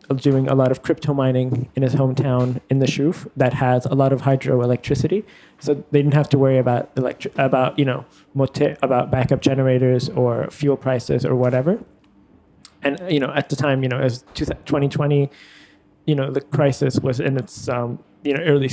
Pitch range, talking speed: 130-145 Hz, 185 wpm